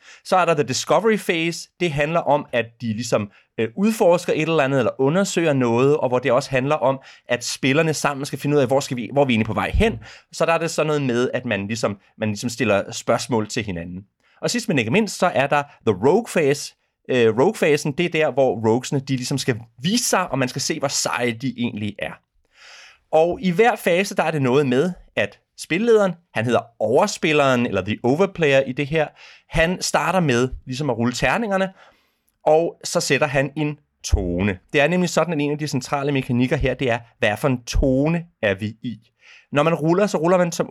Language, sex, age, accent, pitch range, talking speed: Danish, male, 30-49, native, 125-170 Hz, 220 wpm